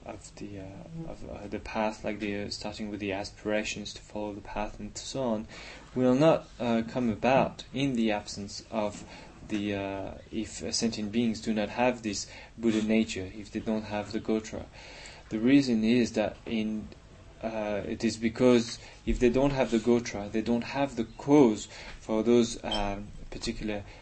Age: 20-39